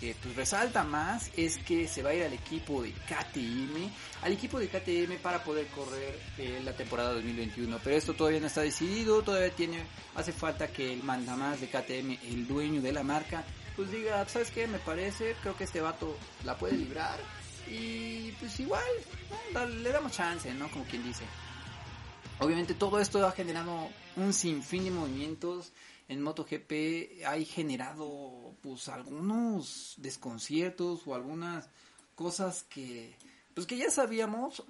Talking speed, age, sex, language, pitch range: 165 wpm, 30-49, male, Spanish, 130-185 Hz